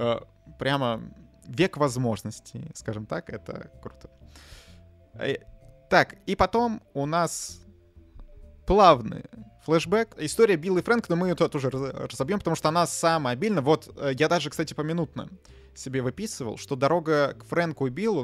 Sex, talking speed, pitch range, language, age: male, 135 wpm, 120-165 Hz, Russian, 20-39